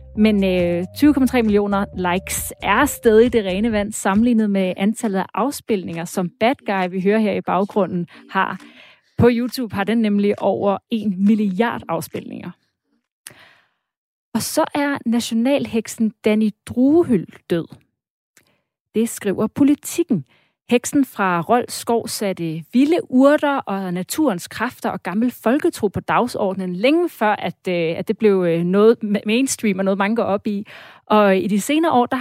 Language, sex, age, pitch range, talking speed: Danish, female, 30-49, 195-250 Hz, 145 wpm